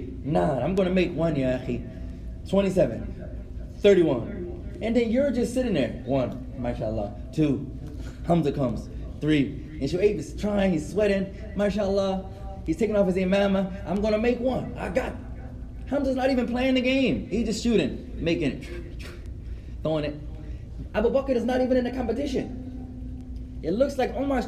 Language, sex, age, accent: English, male, 20-39, American